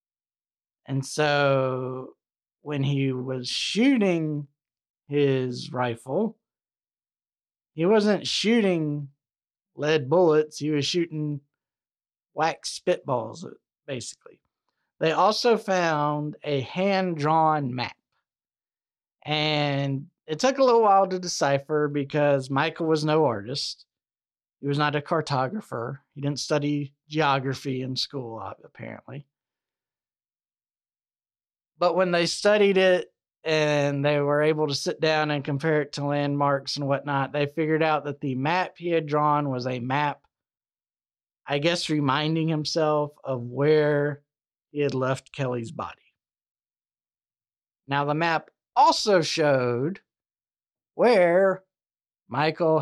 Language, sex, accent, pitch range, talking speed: English, male, American, 135-160 Hz, 110 wpm